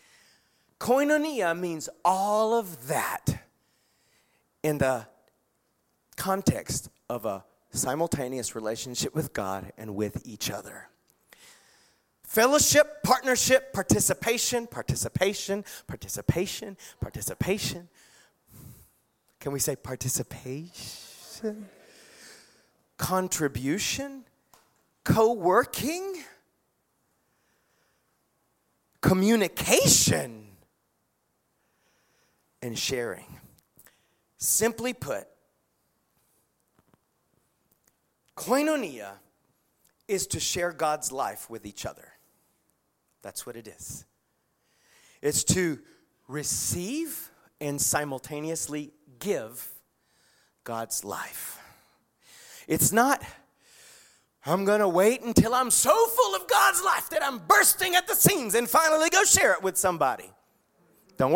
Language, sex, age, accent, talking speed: English, male, 30-49, American, 80 wpm